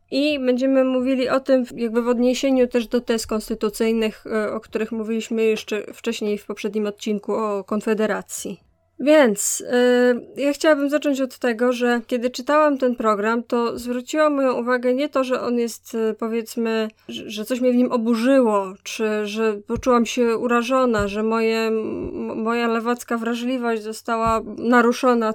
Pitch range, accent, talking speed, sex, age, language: 220-255 Hz, native, 145 wpm, female, 20-39, Polish